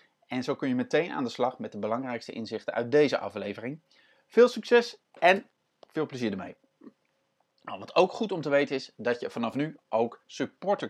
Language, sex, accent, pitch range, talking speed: Dutch, male, Dutch, 120-165 Hz, 185 wpm